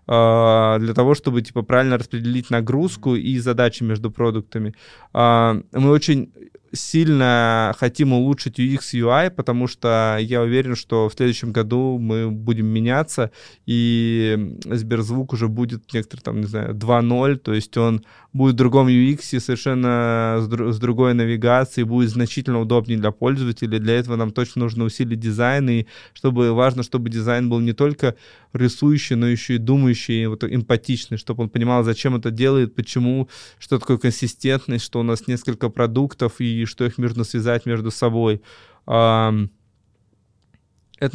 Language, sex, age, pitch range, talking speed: Russian, male, 20-39, 115-130 Hz, 145 wpm